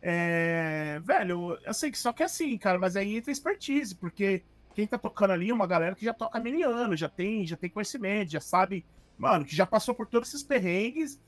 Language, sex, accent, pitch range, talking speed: Portuguese, male, Brazilian, 185-260 Hz, 230 wpm